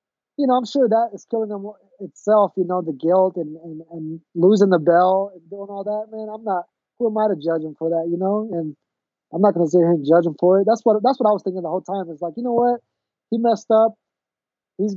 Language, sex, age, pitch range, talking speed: English, male, 20-39, 175-220 Hz, 275 wpm